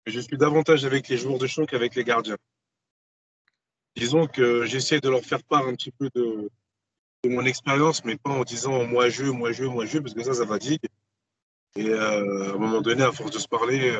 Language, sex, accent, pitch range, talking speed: French, male, French, 115-145 Hz, 225 wpm